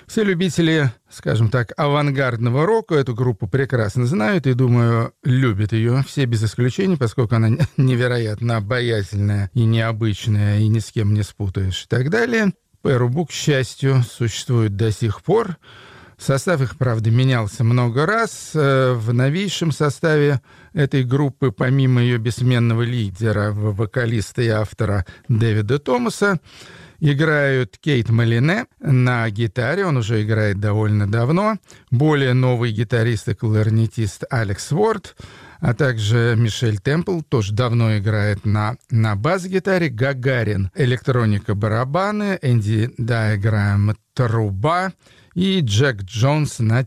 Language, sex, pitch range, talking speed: Russian, male, 110-145 Hz, 125 wpm